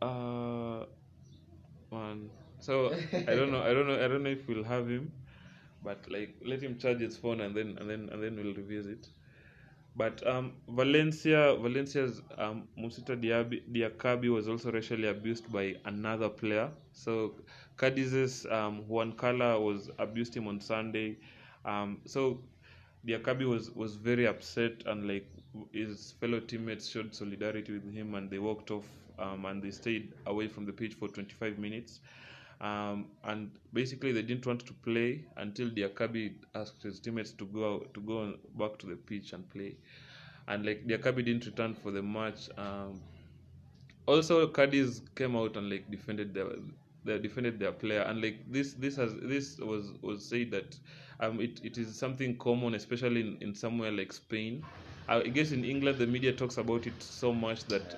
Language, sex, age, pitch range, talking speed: English, male, 20-39, 105-125 Hz, 170 wpm